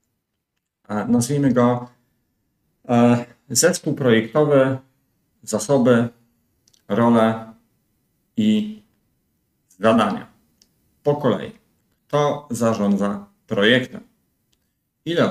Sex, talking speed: male, 55 wpm